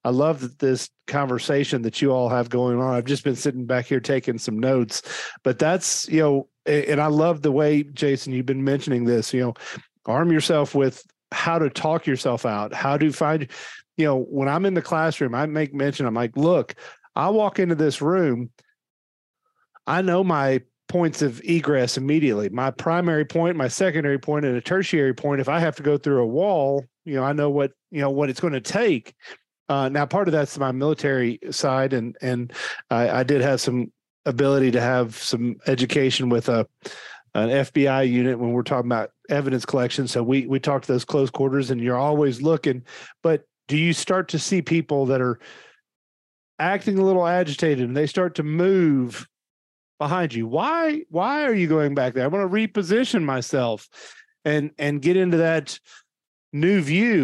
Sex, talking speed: male, 190 wpm